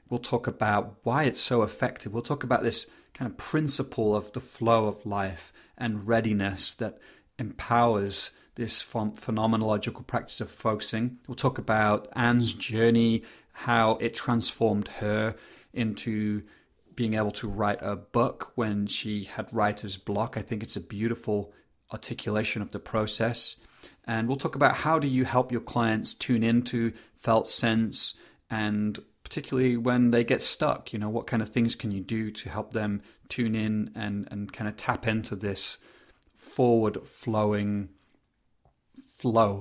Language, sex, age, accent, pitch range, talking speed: English, male, 30-49, British, 105-120 Hz, 155 wpm